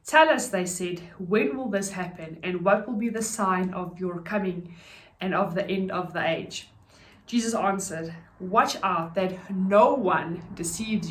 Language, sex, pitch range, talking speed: English, female, 185-220 Hz, 175 wpm